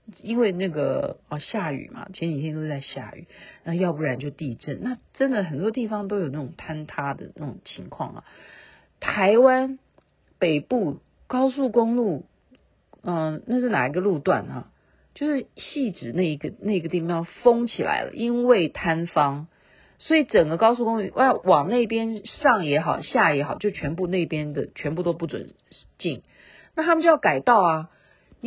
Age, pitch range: 50-69, 150-215 Hz